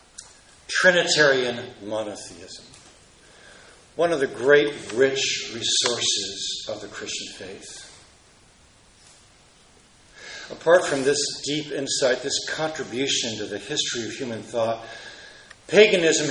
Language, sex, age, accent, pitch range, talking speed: English, male, 50-69, American, 130-175 Hz, 95 wpm